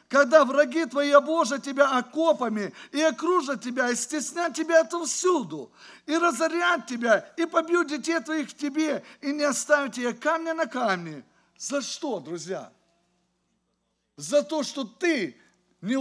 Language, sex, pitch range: English, male, 255-330 Hz